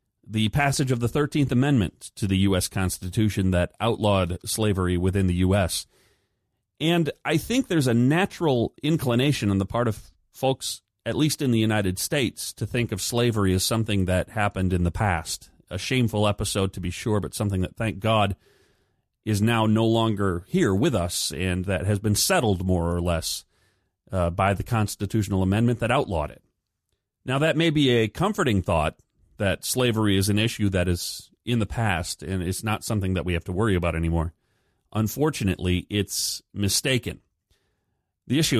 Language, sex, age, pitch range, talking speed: English, male, 40-59, 95-120 Hz, 175 wpm